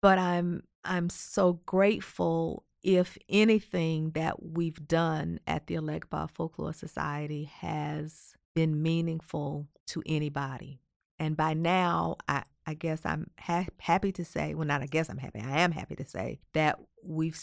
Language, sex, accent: English, female, American